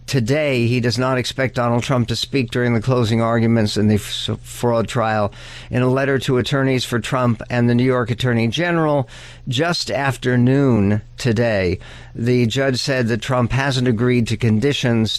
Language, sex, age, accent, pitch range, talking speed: English, male, 60-79, American, 115-135 Hz, 175 wpm